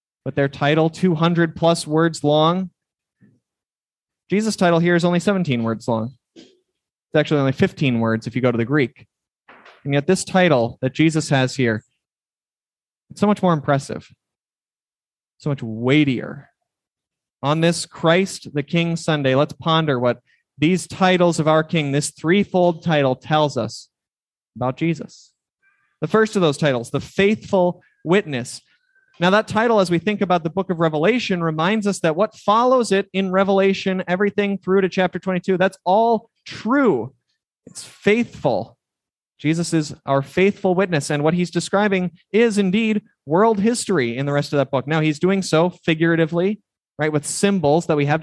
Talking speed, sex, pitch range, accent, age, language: 160 wpm, male, 150-190 Hz, American, 20-39, English